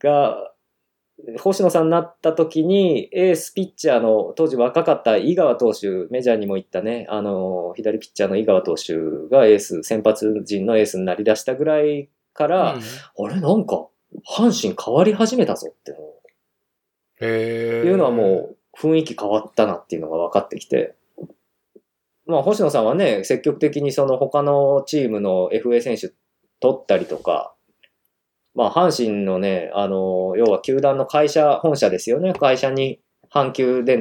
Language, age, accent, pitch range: Japanese, 20-39, native, 110-160 Hz